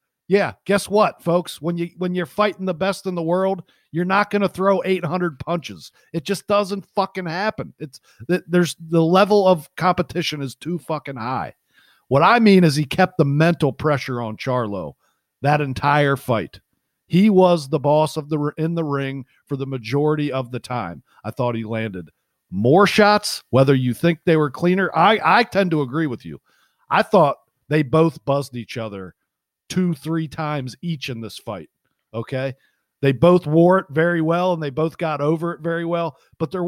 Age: 50-69